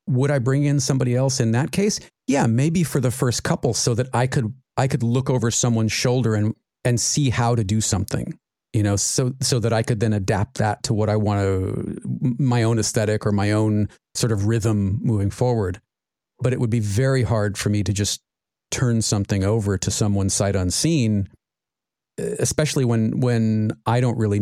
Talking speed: 200 wpm